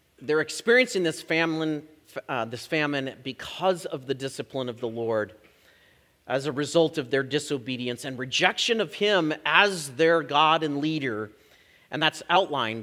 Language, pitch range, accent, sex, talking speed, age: English, 130-175 Hz, American, male, 140 wpm, 40-59